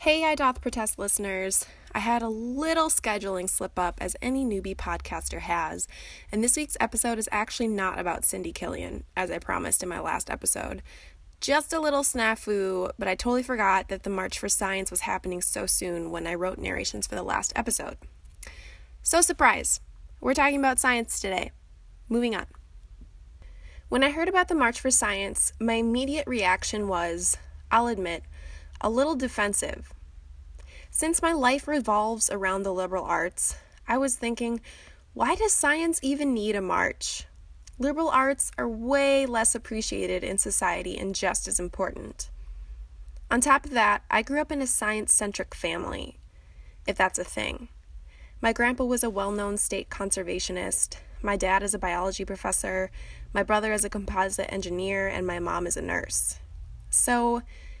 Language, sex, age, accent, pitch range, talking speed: English, female, 20-39, American, 185-250 Hz, 160 wpm